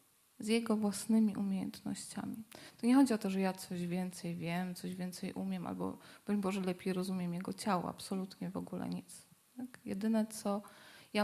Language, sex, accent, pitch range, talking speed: Polish, female, native, 185-225 Hz, 165 wpm